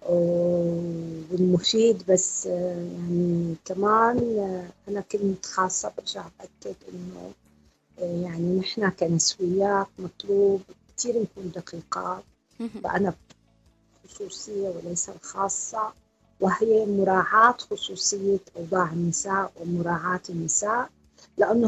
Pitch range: 180-225 Hz